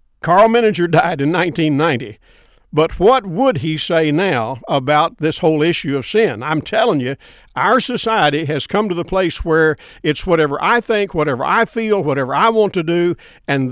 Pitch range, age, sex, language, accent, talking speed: 155-205 Hz, 60-79, male, English, American, 180 wpm